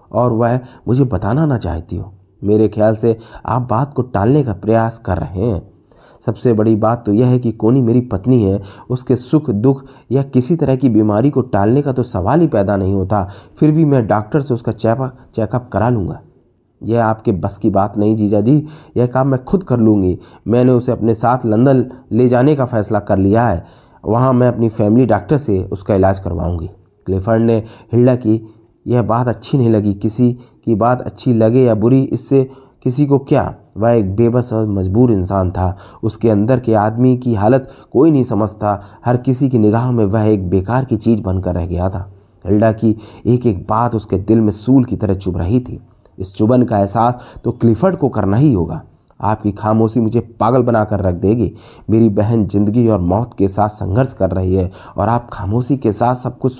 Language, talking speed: Hindi, 205 wpm